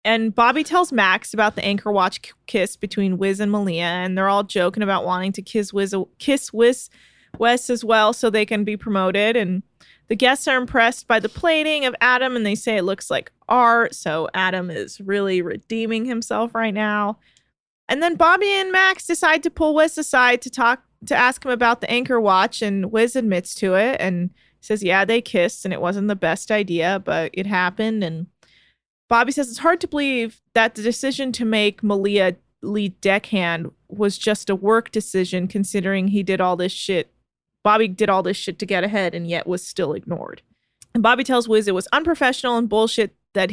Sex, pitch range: female, 190-235 Hz